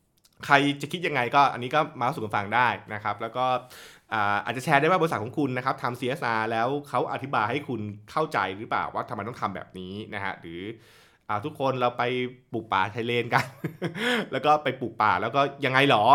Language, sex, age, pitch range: Thai, male, 20-39, 100-125 Hz